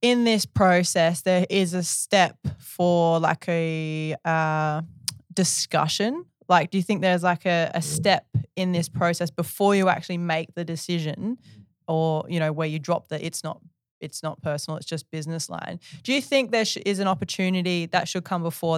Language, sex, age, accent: English, female, 20-39, Australian